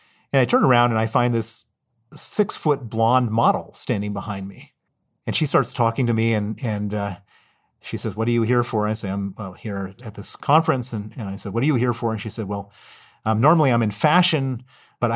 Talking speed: 230 wpm